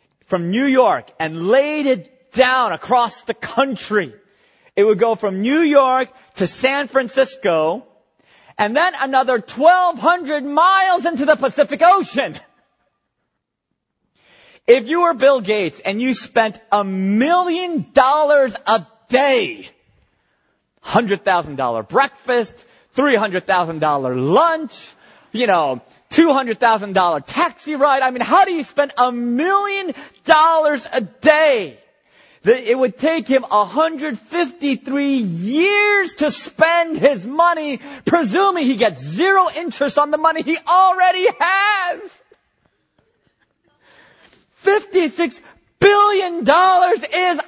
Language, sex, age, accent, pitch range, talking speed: English, male, 30-49, American, 220-335 Hz, 105 wpm